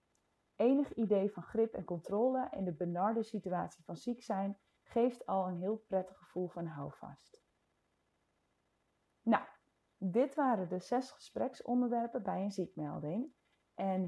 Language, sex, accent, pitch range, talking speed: Dutch, female, Dutch, 175-230 Hz, 130 wpm